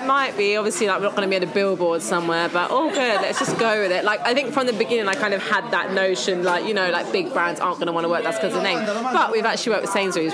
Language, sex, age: English, female, 20-39